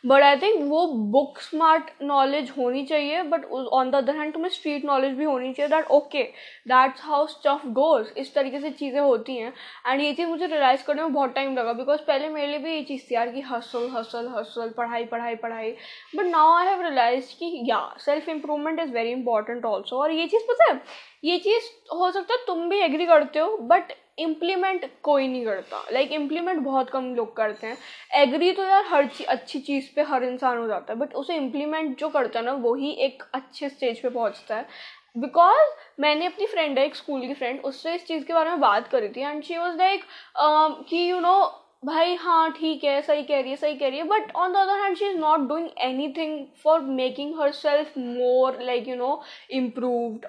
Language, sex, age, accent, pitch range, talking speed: Hindi, female, 10-29, native, 255-320 Hz, 220 wpm